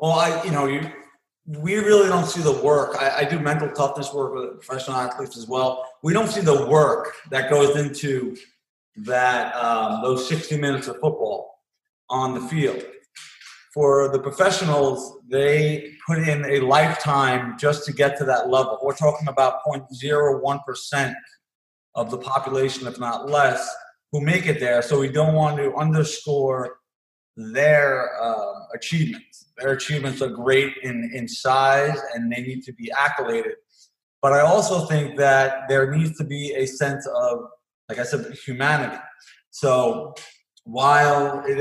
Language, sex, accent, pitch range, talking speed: English, male, American, 130-150 Hz, 155 wpm